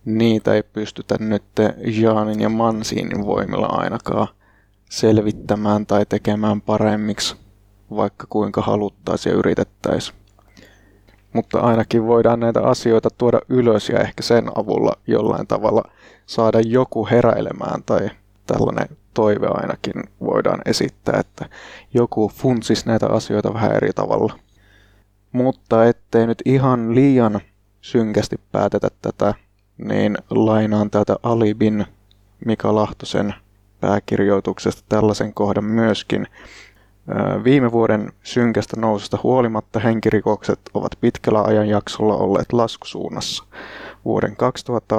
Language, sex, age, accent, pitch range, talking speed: Finnish, male, 20-39, native, 105-115 Hz, 105 wpm